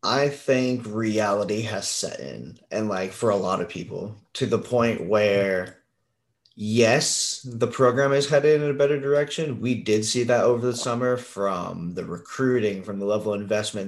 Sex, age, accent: male, 30-49, American